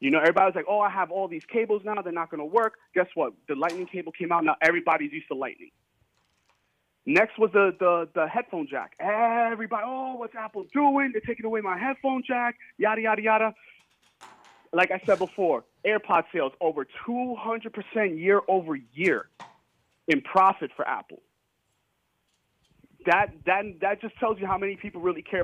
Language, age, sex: English, 30-49, male